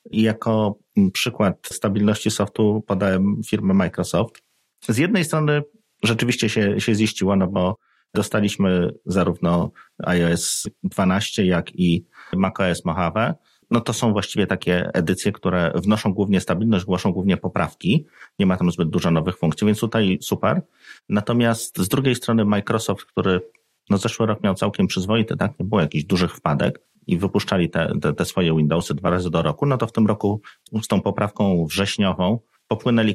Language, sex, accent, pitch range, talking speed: Polish, male, native, 90-110 Hz, 155 wpm